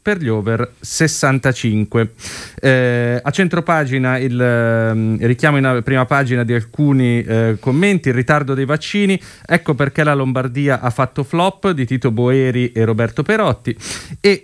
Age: 30-49